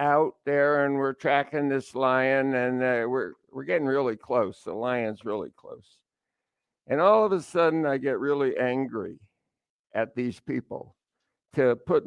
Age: 60-79